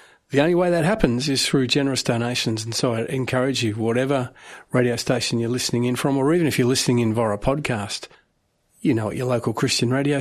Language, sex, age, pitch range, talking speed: English, male, 40-59, 125-150 Hz, 215 wpm